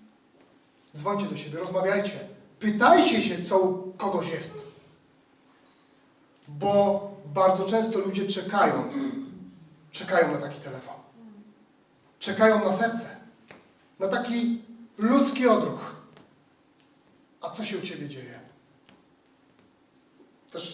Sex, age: male, 40-59